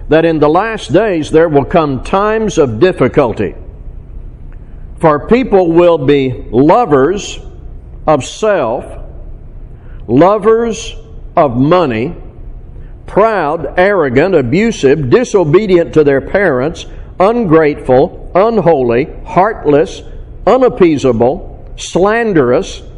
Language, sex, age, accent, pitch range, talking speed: English, male, 60-79, American, 140-205 Hz, 85 wpm